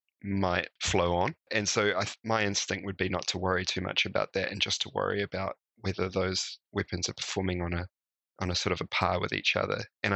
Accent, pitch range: Australian, 90-100 Hz